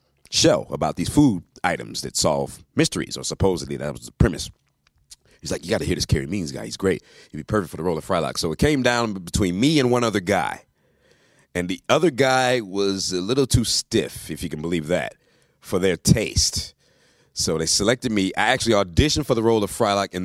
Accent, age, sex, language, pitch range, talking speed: American, 30-49, male, English, 85-130 Hz, 220 wpm